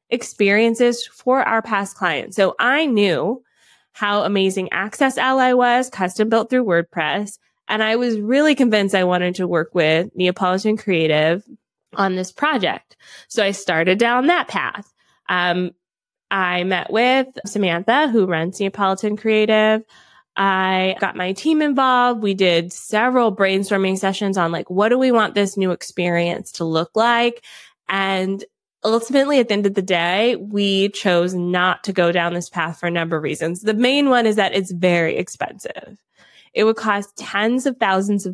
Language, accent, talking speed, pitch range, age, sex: English, American, 165 wpm, 180-235 Hz, 20-39, female